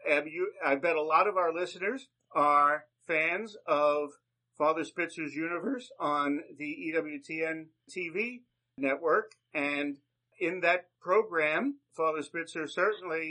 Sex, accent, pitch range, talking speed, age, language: male, American, 150-195 Hz, 120 wpm, 50-69, English